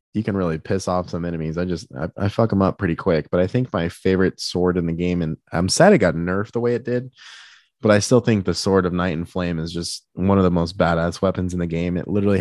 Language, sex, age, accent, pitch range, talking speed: English, male, 20-39, American, 85-100 Hz, 280 wpm